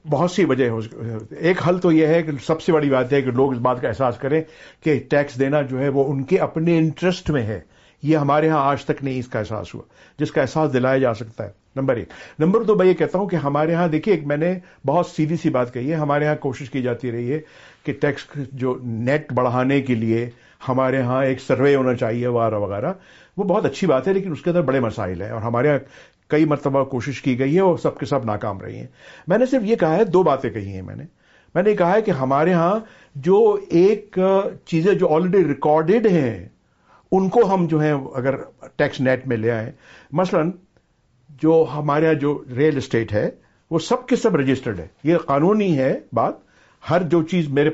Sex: male